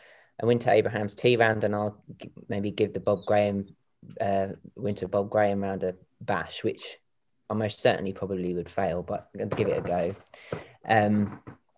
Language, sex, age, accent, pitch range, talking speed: English, male, 20-39, British, 105-125 Hz, 160 wpm